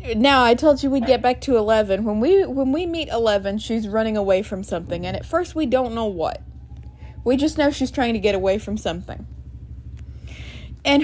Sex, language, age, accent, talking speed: female, English, 20-39, American, 205 wpm